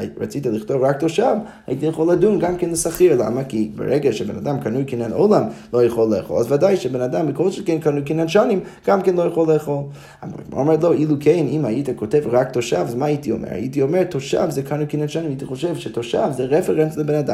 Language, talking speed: Hebrew, 100 wpm